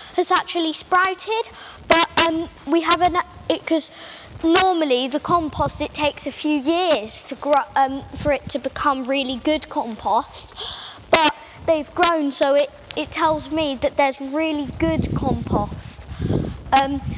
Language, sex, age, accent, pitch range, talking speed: English, female, 10-29, British, 270-330 Hz, 145 wpm